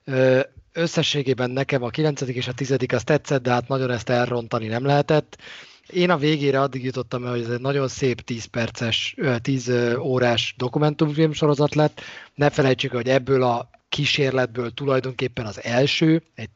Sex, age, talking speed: male, 30-49, 160 wpm